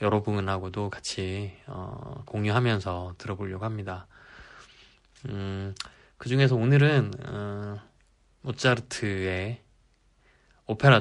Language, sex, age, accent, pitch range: Korean, male, 20-39, native, 95-130 Hz